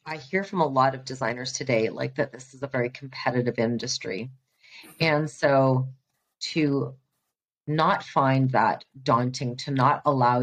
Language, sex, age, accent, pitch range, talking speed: English, female, 30-49, American, 130-145 Hz, 150 wpm